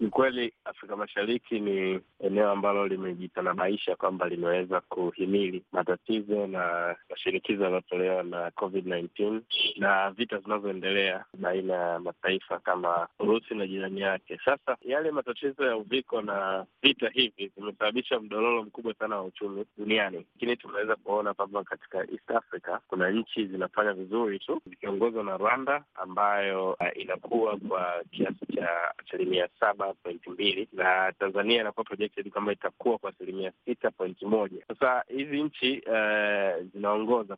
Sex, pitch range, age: male, 95-115 Hz, 20-39